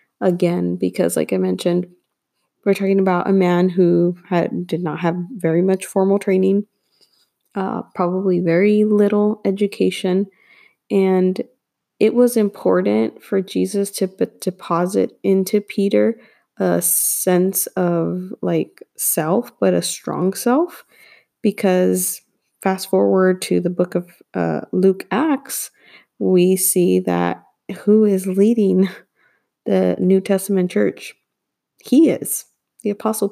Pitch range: 180-215 Hz